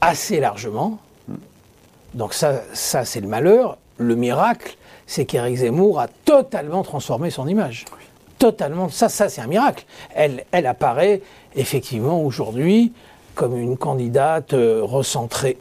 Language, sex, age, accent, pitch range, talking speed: French, male, 60-79, French, 135-195 Hz, 125 wpm